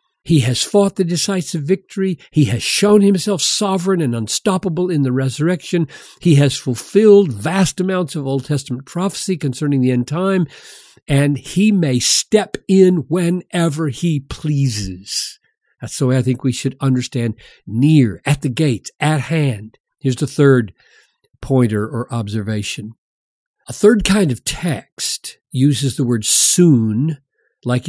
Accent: American